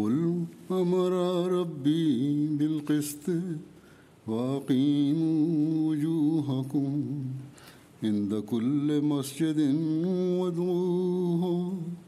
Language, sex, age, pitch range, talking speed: Turkish, male, 60-79, 140-175 Hz, 50 wpm